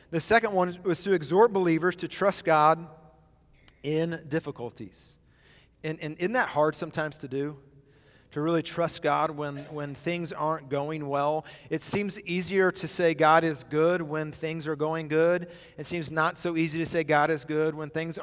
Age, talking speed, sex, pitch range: 30-49, 180 wpm, male, 145-175 Hz